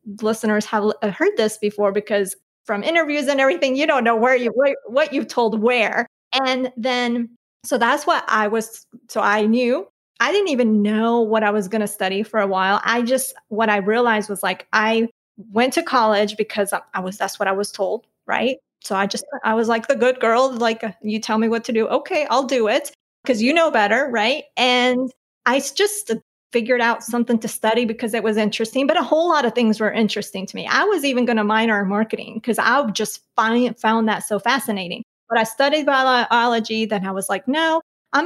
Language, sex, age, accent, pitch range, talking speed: English, female, 30-49, American, 215-265 Hz, 210 wpm